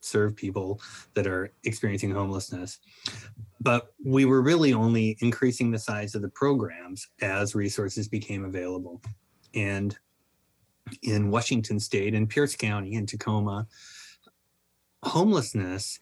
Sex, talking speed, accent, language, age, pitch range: male, 115 wpm, American, English, 30-49, 95-115 Hz